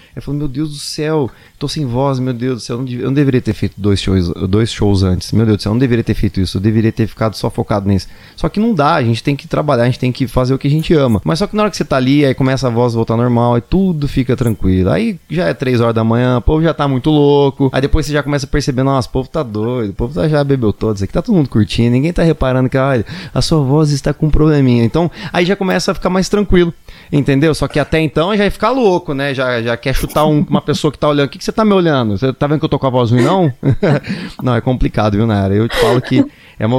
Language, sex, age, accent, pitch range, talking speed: Portuguese, male, 20-39, Brazilian, 115-150 Hz, 300 wpm